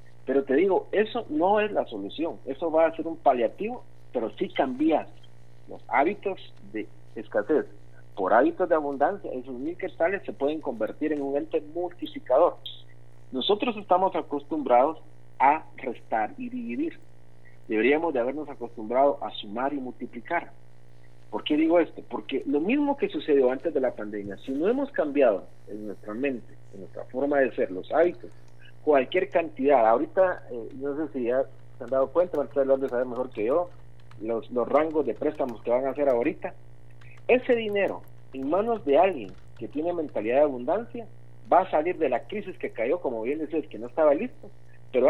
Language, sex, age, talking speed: Spanish, male, 50-69, 175 wpm